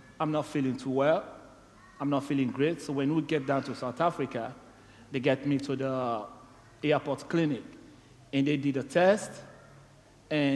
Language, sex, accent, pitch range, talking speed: English, male, Nigerian, 135-165 Hz, 170 wpm